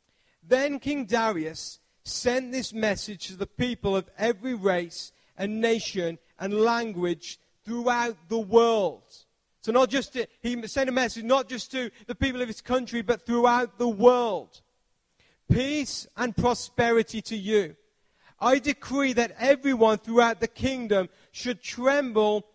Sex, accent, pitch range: male, British, 205-250 Hz